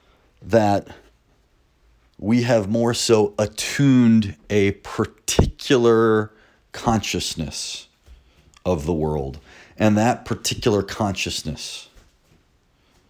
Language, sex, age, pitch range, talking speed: English, male, 30-49, 80-100 Hz, 75 wpm